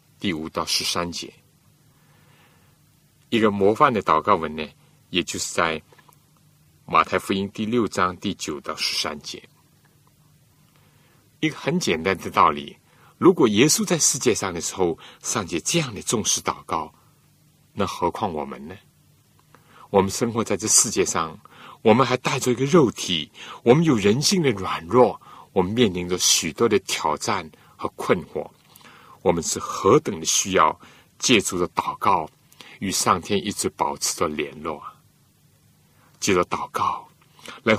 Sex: male